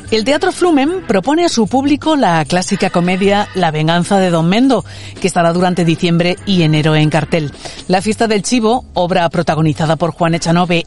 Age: 40-59